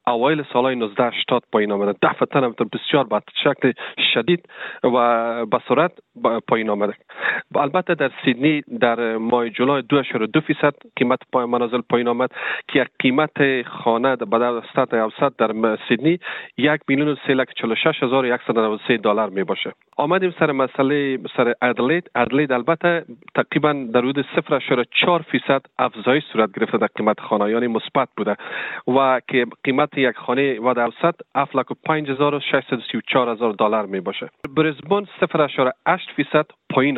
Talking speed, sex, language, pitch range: 135 wpm, male, Persian, 120-150 Hz